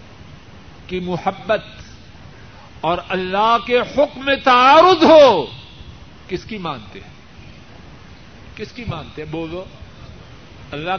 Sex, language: male, Urdu